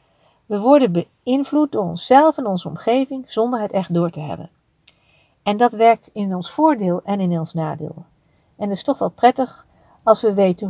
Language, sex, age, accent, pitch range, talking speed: Dutch, female, 60-79, Dutch, 165-240 Hz, 185 wpm